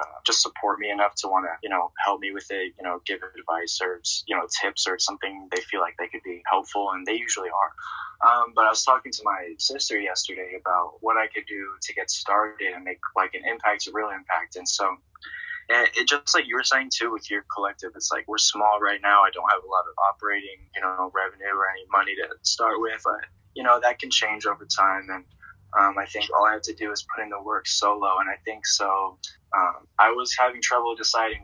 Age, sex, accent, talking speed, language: 20-39, male, American, 245 wpm, English